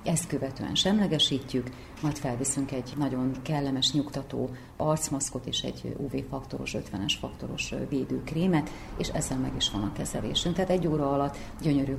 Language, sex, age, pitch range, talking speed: Hungarian, female, 30-49, 135-170 Hz, 140 wpm